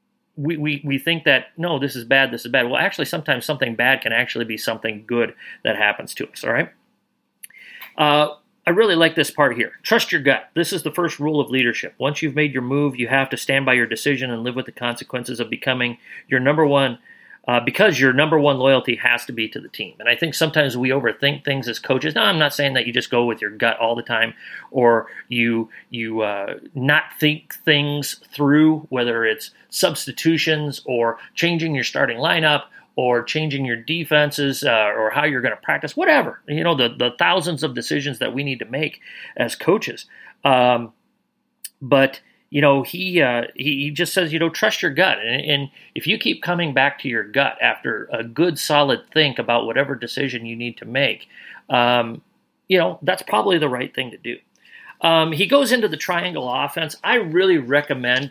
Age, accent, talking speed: 40-59, American, 205 wpm